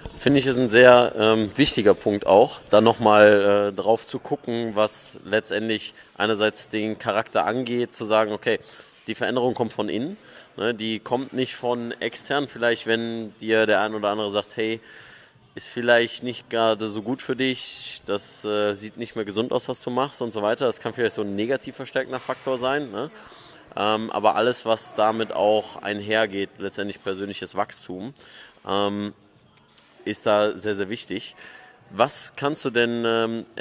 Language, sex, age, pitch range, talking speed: German, male, 20-39, 105-120 Hz, 165 wpm